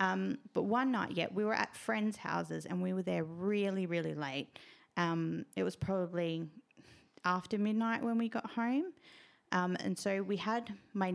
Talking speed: 185 wpm